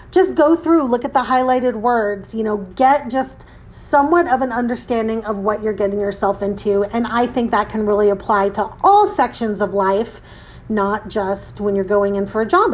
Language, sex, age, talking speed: English, female, 40-59, 205 wpm